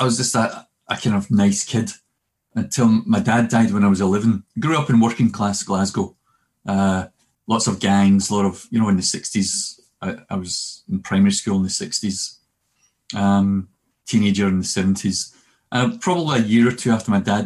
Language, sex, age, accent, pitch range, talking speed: English, male, 30-49, British, 95-130 Hz, 205 wpm